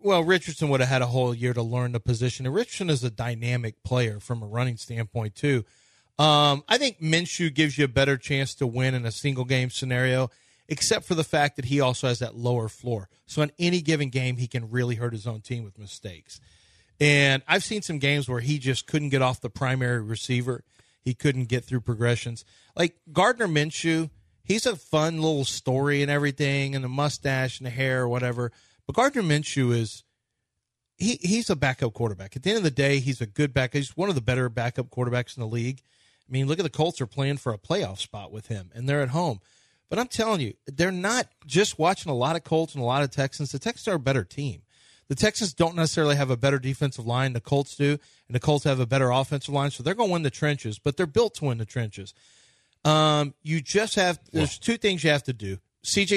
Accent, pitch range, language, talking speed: American, 120-155 Hz, English, 230 wpm